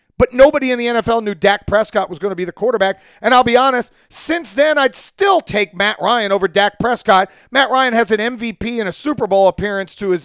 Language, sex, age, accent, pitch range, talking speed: English, male, 40-59, American, 175-240 Hz, 235 wpm